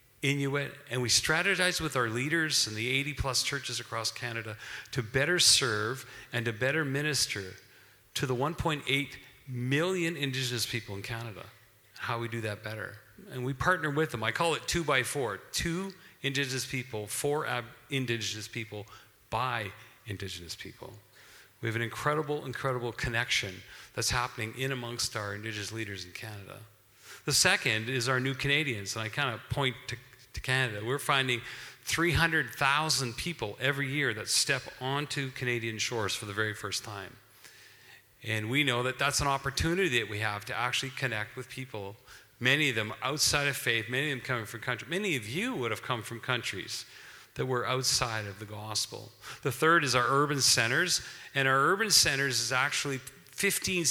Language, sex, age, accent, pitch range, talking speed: English, male, 40-59, American, 115-140 Hz, 170 wpm